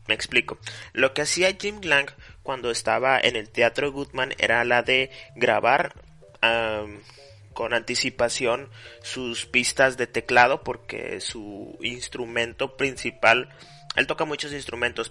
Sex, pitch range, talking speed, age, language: male, 115-135 Hz, 125 wpm, 30-49, Spanish